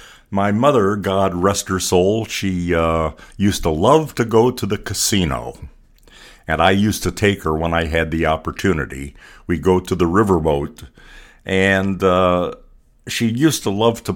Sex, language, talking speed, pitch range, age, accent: male, English, 165 wpm, 85-105 Hz, 60-79, American